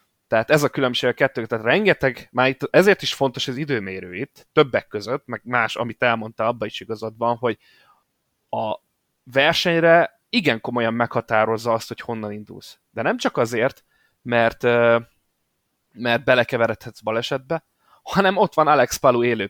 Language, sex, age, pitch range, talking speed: Hungarian, male, 20-39, 115-140 Hz, 145 wpm